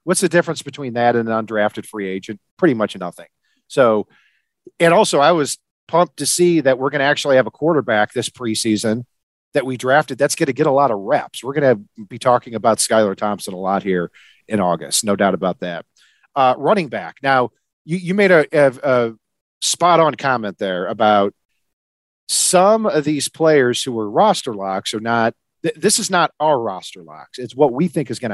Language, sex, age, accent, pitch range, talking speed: English, male, 40-59, American, 110-155 Hz, 205 wpm